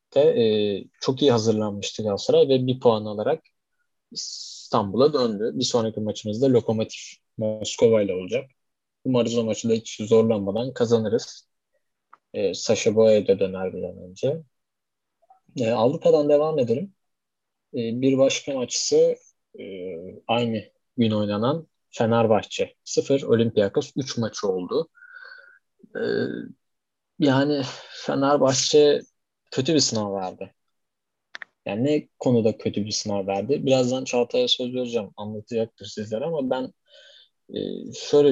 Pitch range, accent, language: 105-140 Hz, native, Turkish